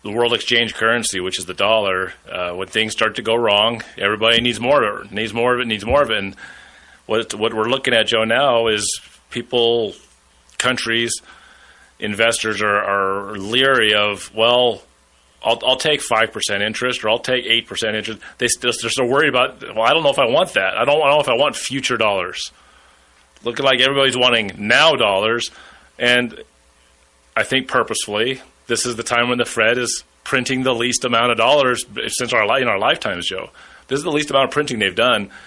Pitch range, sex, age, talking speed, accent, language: 105-130 Hz, male, 30-49, 195 wpm, American, English